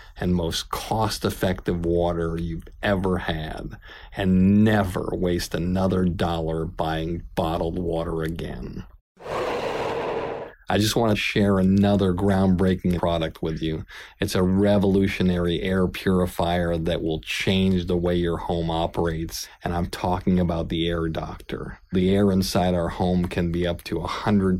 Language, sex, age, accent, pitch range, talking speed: English, male, 50-69, American, 85-95 Hz, 135 wpm